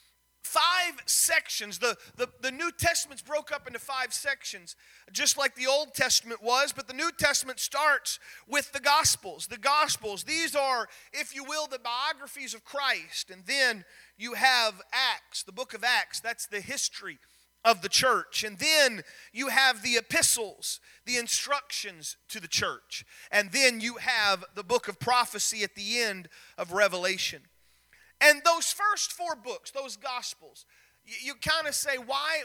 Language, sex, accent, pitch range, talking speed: English, male, American, 220-290 Hz, 165 wpm